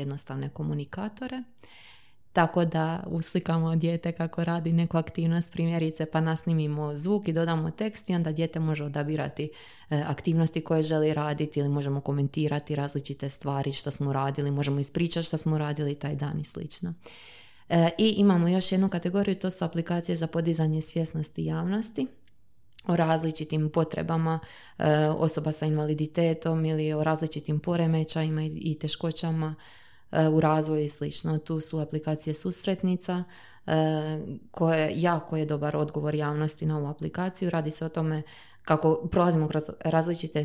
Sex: female